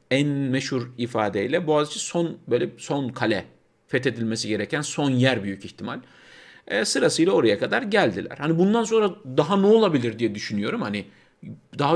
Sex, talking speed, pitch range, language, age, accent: male, 145 wpm, 110-155 Hz, Turkish, 50-69, native